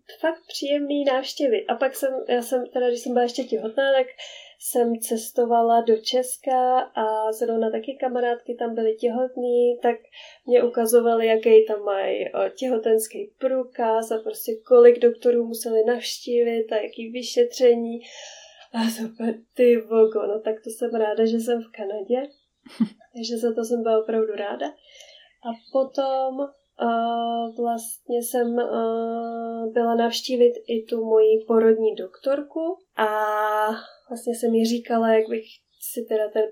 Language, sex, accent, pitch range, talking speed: Czech, female, native, 225-255 Hz, 140 wpm